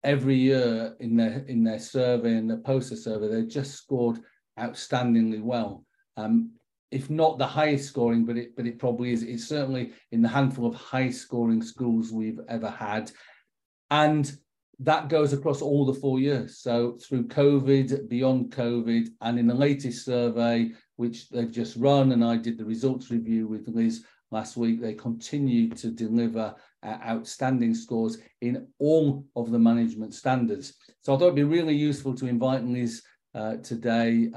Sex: male